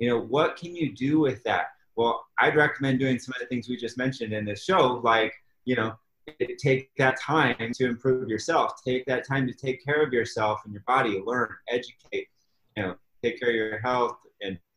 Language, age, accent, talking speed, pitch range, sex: English, 30-49, American, 210 wpm, 110-135 Hz, male